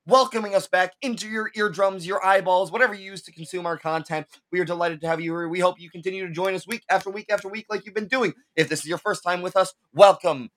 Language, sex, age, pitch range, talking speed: English, male, 20-39, 160-195 Hz, 265 wpm